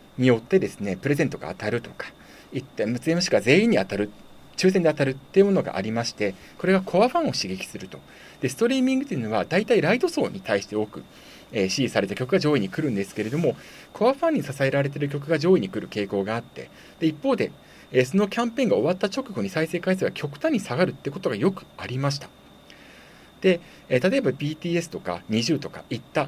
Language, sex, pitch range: Japanese, male, 125-200 Hz